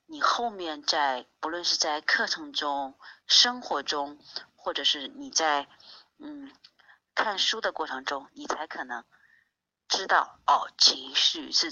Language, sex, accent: Chinese, female, native